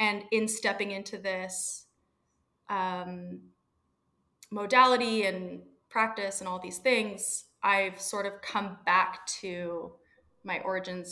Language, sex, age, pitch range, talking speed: English, female, 20-39, 180-205 Hz, 115 wpm